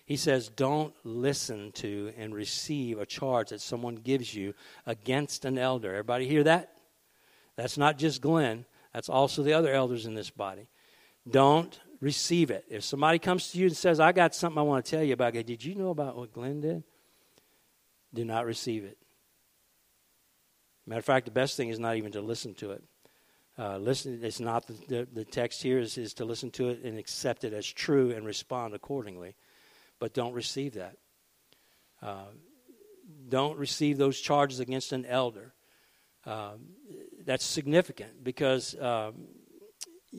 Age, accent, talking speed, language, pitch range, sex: 60-79, American, 170 wpm, English, 120-150 Hz, male